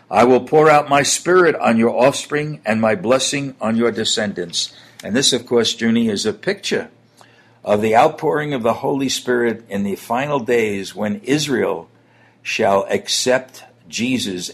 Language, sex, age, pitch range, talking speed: English, male, 60-79, 105-130 Hz, 160 wpm